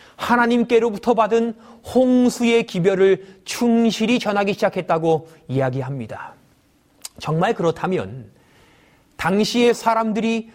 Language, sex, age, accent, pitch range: Korean, male, 40-59, native, 195-255 Hz